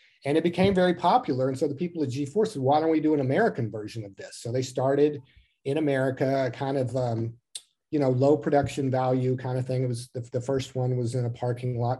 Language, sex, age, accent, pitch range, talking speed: English, male, 40-59, American, 120-140 Hz, 245 wpm